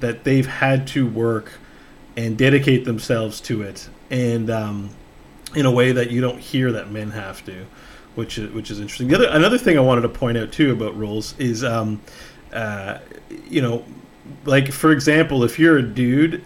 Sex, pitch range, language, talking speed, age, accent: male, 115-140 Hz, English, 190 wpm, 30-49, American